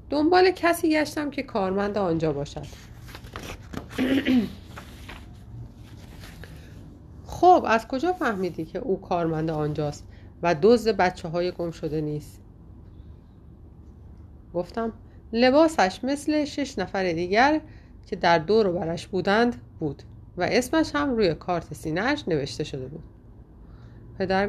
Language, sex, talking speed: Persian, female, 110 wpm